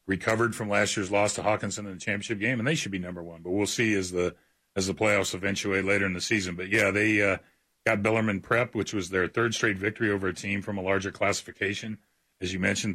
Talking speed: 245 wpm